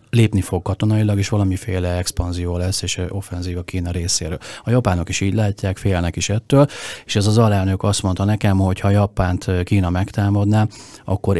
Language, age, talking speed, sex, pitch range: Hungarian, 40-59, 175 wpm, male, 90-105 Hz